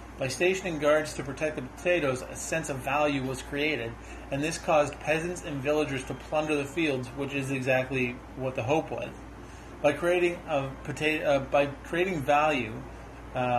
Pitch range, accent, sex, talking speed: 130-150 Hz, American, male, 170 wpm